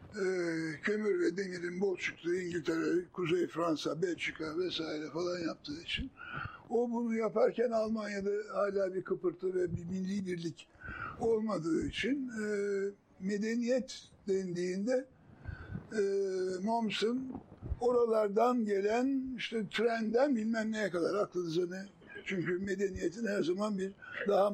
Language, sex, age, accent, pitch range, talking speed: Turkish, male, 60-79, native, 185-235 Hz, 115 wpm